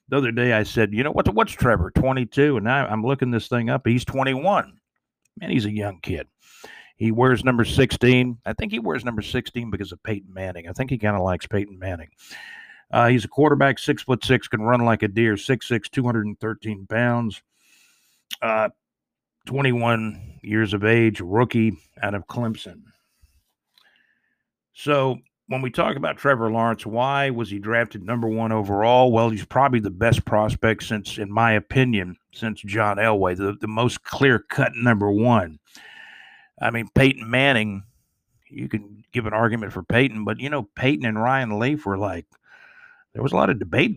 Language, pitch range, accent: English, 105-130 Hz, American